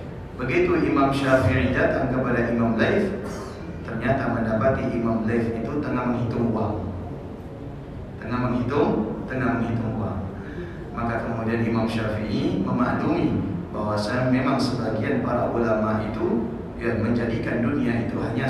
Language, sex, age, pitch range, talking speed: Indonesian, male, 30-49, 110-130 Hz, 115 wpm